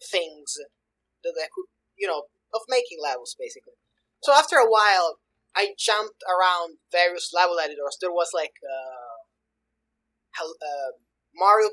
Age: 20-39